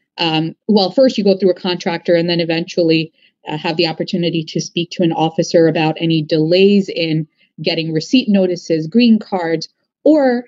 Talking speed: 170 wpm